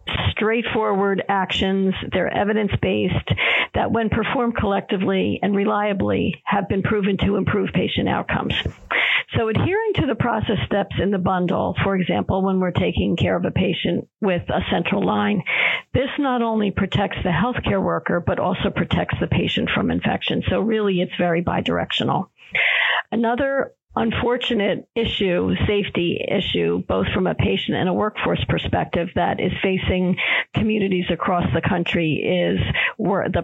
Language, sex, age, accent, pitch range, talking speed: English, female, 50-69, American, 180-205 Hz, 145 wpm